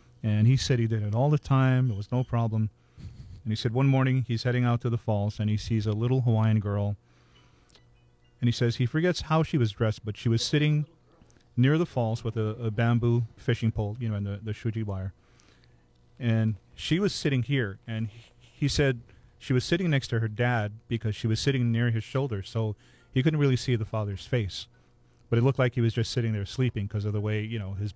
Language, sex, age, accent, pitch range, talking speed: English, male, 40-59, American, 110-145 Hz, 230 wpm